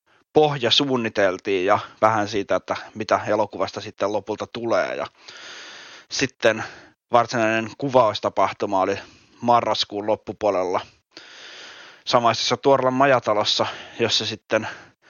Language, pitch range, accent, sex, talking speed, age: Finnish, 105-120 Hz, native, male, 90 wpm, 20-39